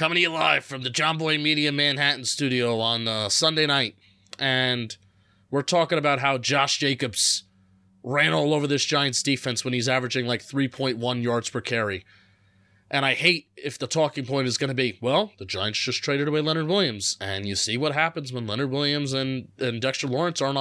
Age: 30-49